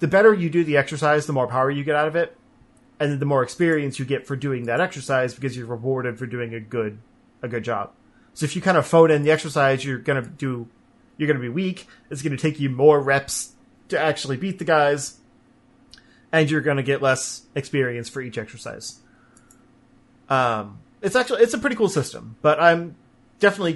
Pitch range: 120-150 Hz